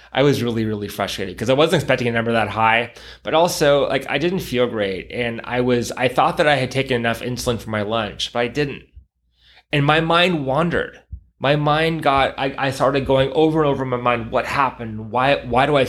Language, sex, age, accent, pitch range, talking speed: English, male, 20-39, American, 110-140 Hz, 225 wpm